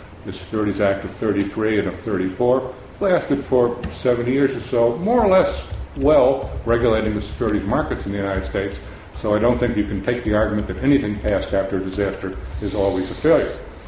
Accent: American